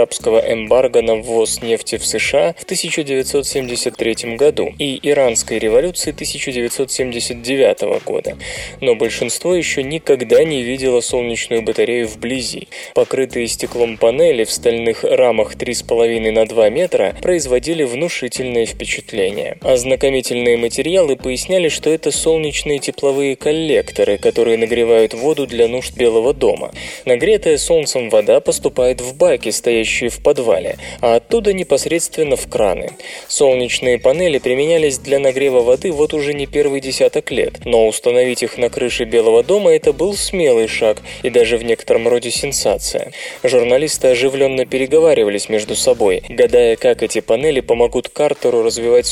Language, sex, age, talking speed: Russian, male, 20-39, 130 wpm